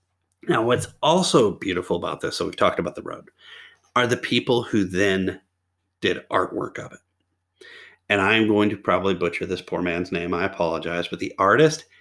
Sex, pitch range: male, 95-140 Hz